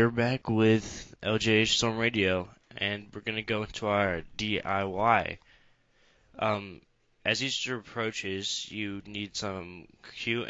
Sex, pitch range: male, 95-110 Hz